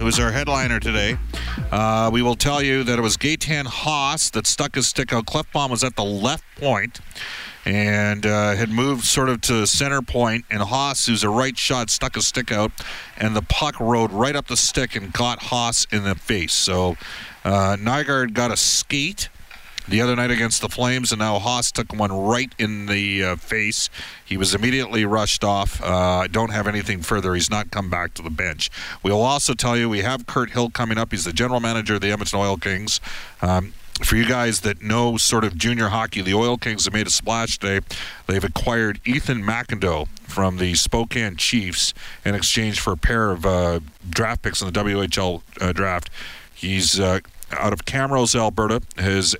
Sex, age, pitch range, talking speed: male, 40-59, 95-120 Hz, 200 wpm